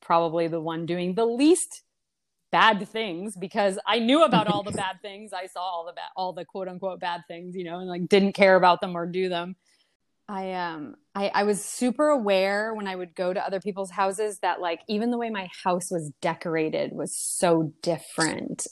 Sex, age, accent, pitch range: female, 30-49, American, 165-200 Hz